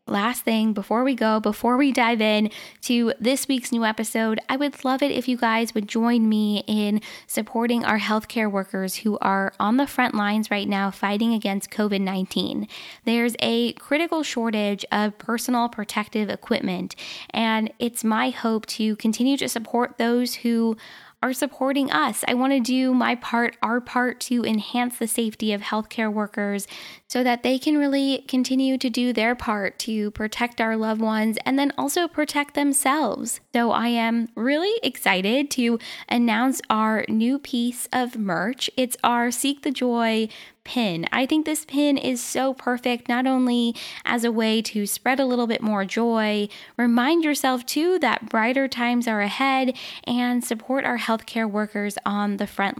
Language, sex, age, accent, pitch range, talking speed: English, female, 10-29, American, 215-250 Hz, 170 wpm